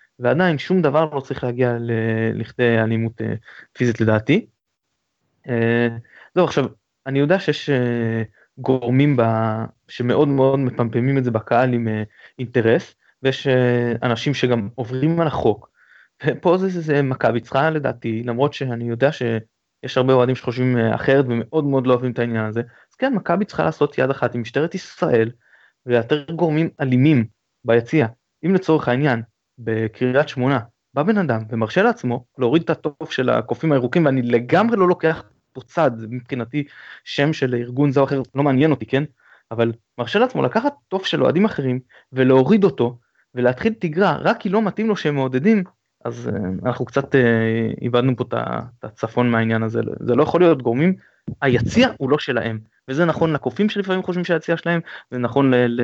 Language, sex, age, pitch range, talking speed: Hebrew, male, 20-39, 120-155 Hz, 165 wpm